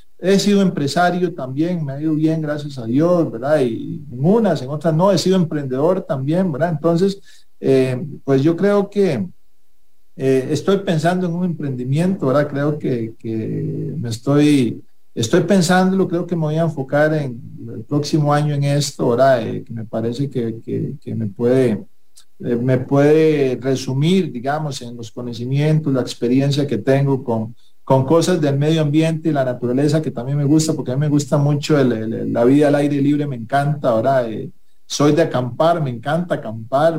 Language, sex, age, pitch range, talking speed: English, male, 40-59, 130-165 Hz, 185 wpm